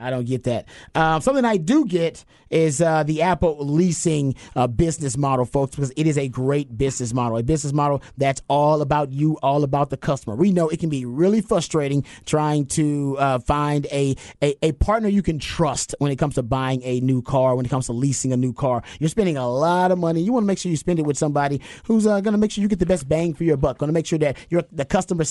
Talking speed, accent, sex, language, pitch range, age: 255 wpm, American, male, English, 145-180 Hz, 30-49